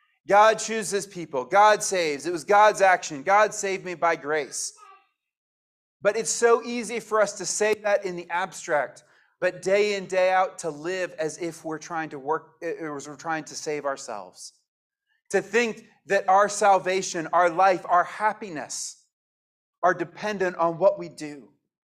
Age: 30-49